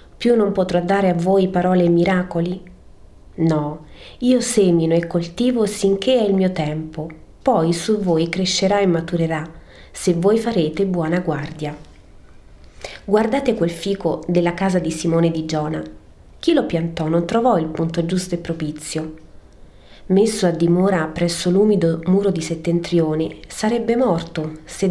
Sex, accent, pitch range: female, native, 160-200 Hz